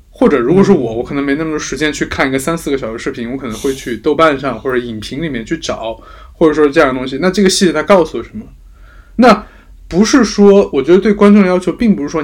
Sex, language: male, Chinese